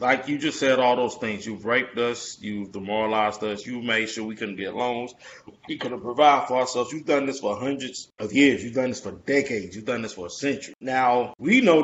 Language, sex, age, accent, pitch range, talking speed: English, male, 20-39, American, 115-145 Hz, 235 wpm